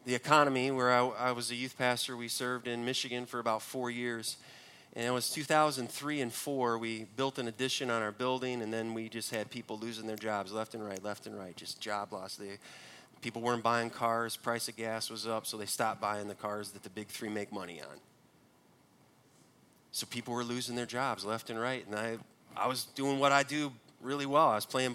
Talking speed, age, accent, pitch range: 225 wpm, 30-49, American, 115-150 Hz